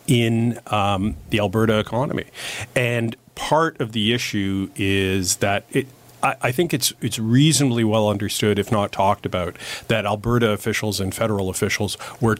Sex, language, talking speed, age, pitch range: male, English, 155 wpm, 40-59, 100-120 Hz